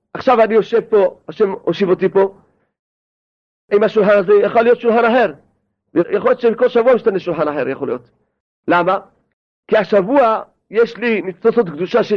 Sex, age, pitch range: male, 40-59, 200-250 Hz